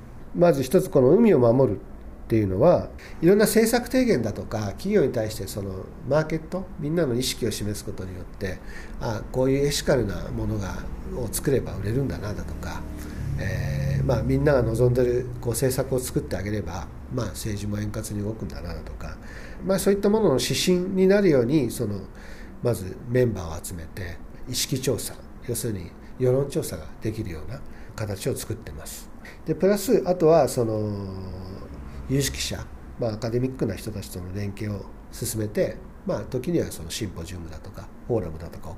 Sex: male